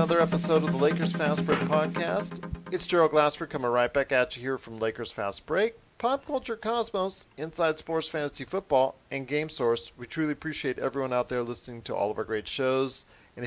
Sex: male